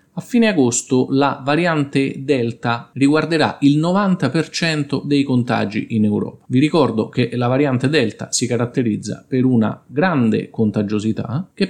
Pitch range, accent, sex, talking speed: 110-135 Hz, native, male, 135 wpm